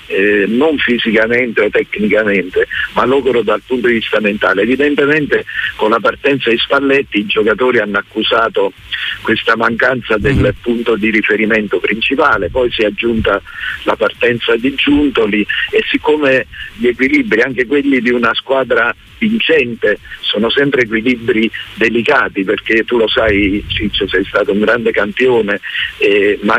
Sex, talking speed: male, 140 wpm